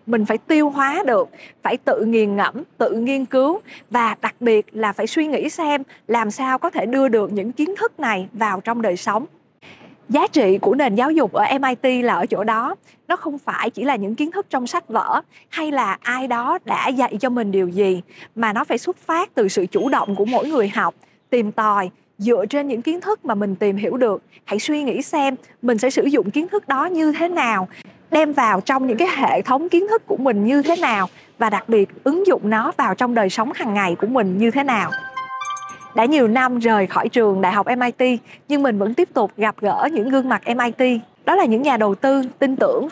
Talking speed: 230 wpm